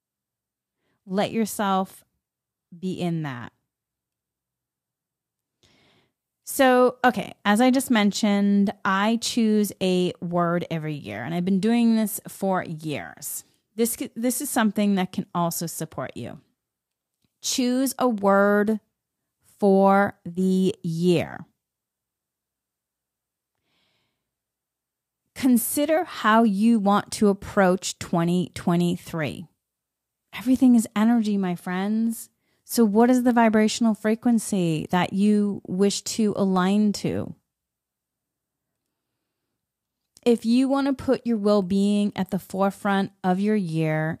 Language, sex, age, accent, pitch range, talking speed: English, female, 30-49, American, 180-230 Hz, 105 wpm